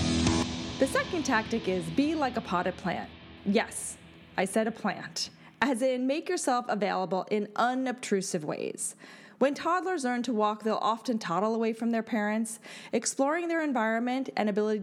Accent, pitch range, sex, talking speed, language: American, 190-250 Hz, female, 160 wpm, English